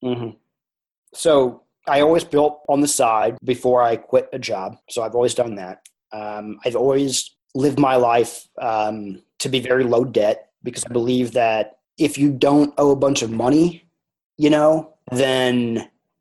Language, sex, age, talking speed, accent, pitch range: English, male, 30-49, 165 wpm, American, 120-140 Hz